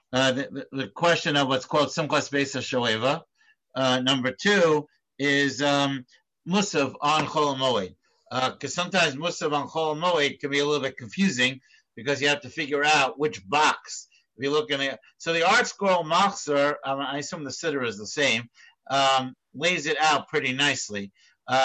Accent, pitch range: American, 140-170 Hz